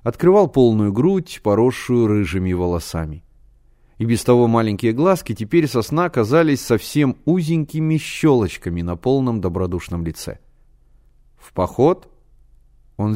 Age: 30-49